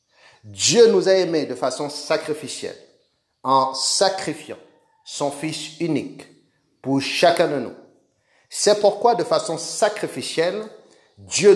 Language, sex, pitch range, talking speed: French, male, 135-185 Hz, 115 wpm